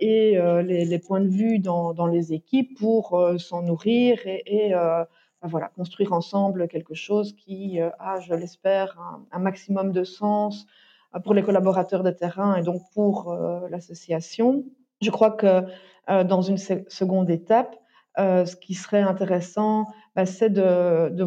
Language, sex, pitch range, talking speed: French, female, 175-215 Hz, 175 wpm